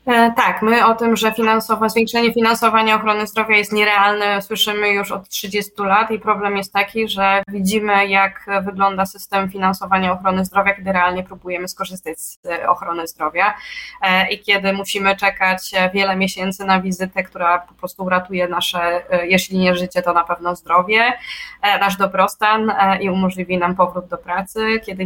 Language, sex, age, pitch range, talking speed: Polish, female, 20-39, 185-220 Hz, 155 wpm